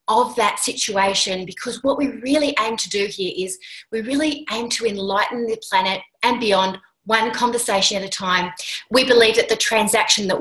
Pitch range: 190-235 Hz